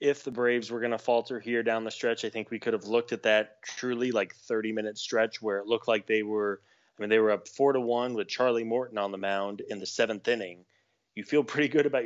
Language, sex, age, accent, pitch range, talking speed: English, male, 20-39, American, 105-120 Hz, 265 wpm